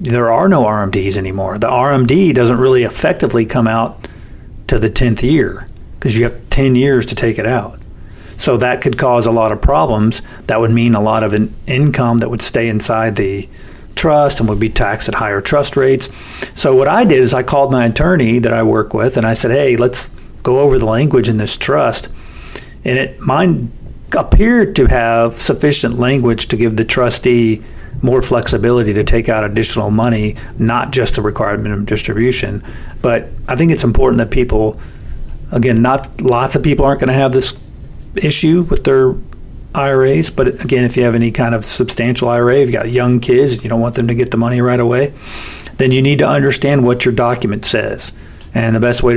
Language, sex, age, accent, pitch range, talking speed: English, male, 50-69, American, 110-130 Hz, 200 wpm